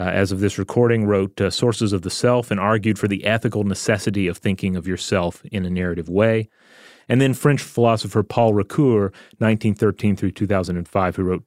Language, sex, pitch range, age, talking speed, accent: English, male, 95-115 Hz, 30-49, 190 wpm, American